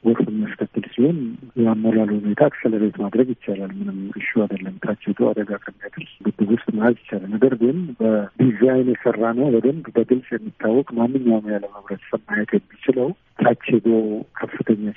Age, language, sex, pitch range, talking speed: 50-69, Amharic, male, 110-125 Hz, 125 wpm